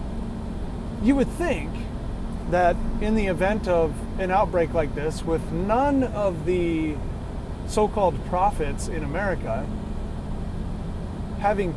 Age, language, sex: 30-49, English, male